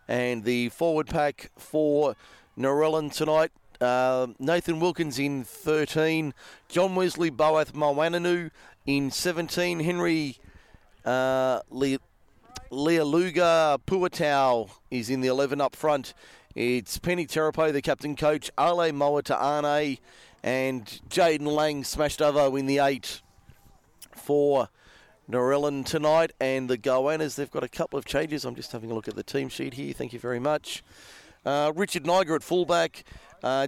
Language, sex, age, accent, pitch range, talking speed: English, male, 40-59, Australian, 130-165 Hz, 140 wpm